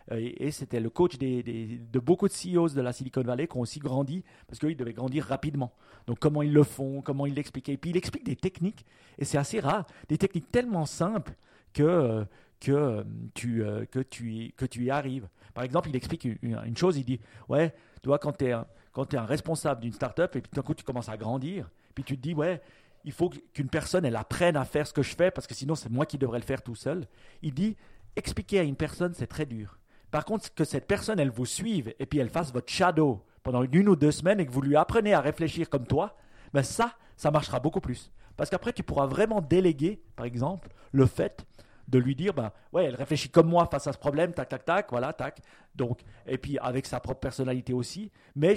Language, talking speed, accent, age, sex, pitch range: French, 240 wpm, French, 40-59, male, 125-165 Hz